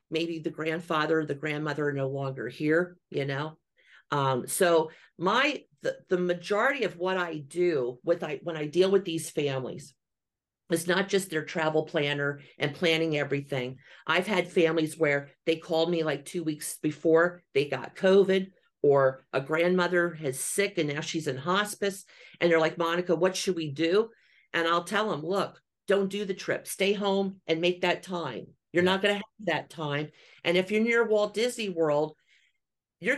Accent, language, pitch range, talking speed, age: American, English, 155-195 Hz, 185 wpm, 50-69